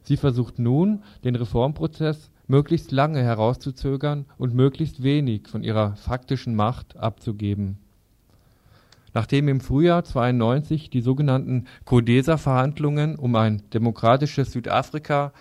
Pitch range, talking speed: 115-145 Hz, 110 wpm